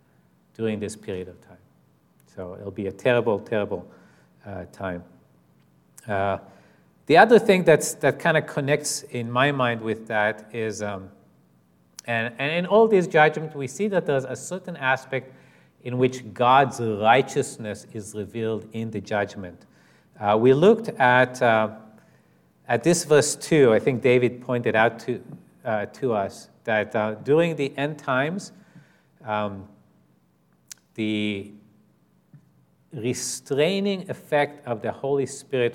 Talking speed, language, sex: 140 wpm, English, male